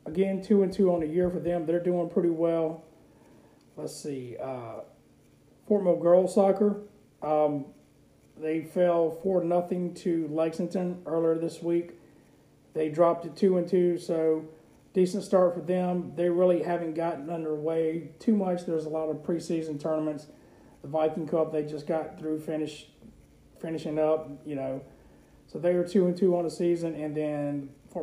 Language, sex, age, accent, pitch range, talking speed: English, male, 40-59, American, 150-175 Hz, 170 wpm